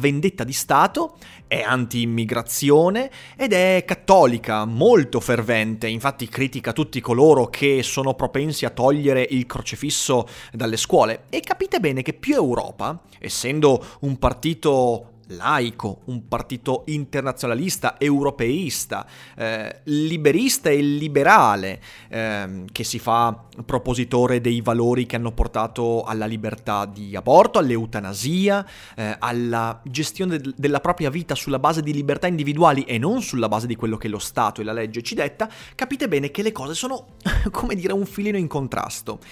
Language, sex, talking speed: Italian, male, 140 wpm